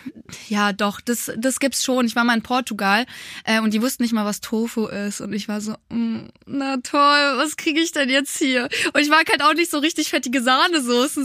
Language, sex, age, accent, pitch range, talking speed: German, female, 20-39, German, 220-285 Hz, 225 wpm